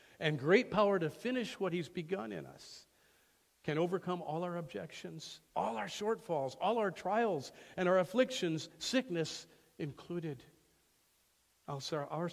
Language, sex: English, male